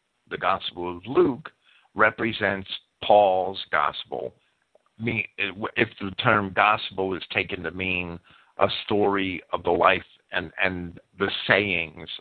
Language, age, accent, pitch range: English, 50-69, American, 95-125 Hz